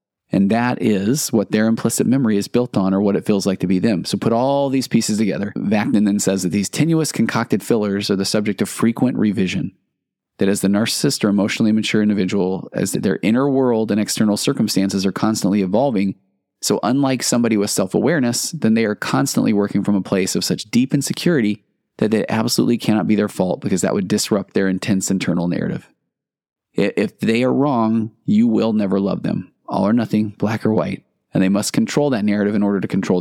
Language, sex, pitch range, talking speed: English, male, 100-120 Hz, 205 wpm